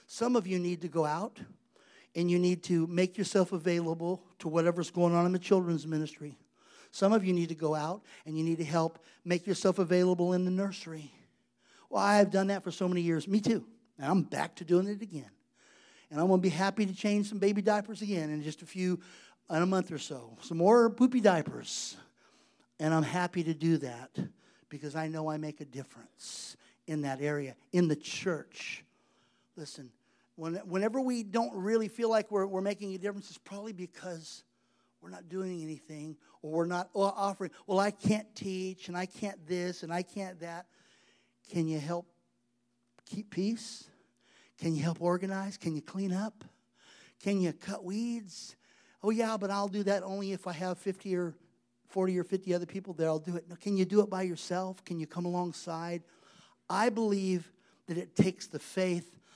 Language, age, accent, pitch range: English, 50-69, American, 165-195 Hz